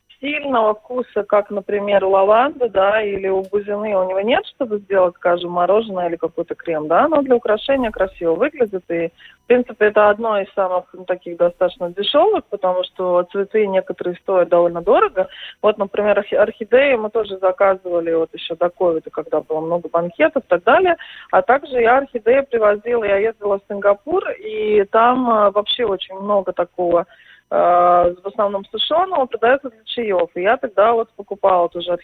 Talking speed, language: 165 wpm, Russian